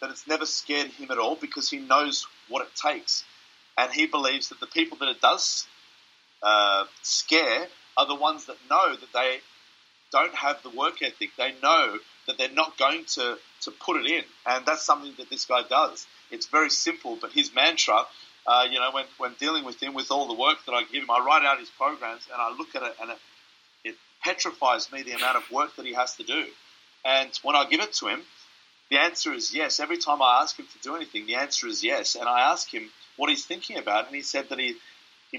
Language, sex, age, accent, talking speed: English, male, 30-49, Australian, 230 wpm